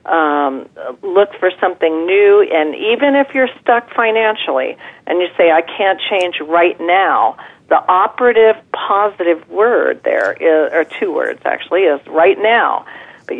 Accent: American